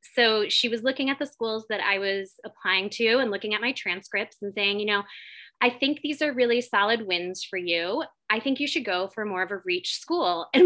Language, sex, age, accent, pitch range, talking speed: English, female, 20-39, American, 210-270 Hz, 235 wpm